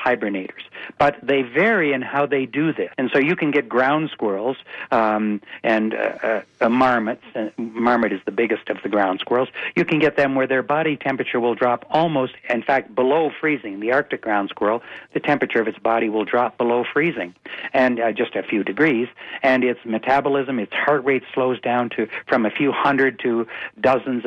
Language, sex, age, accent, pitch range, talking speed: English, male, 60-79, American, 120-140 Hz, 195 wpm